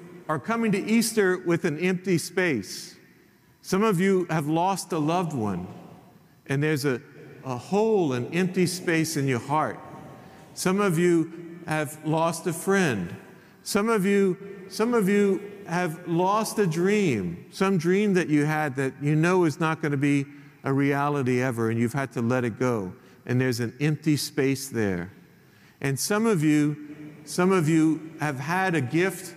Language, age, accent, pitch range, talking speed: English, 50-69, American, 135-185 Hz, 170 wpm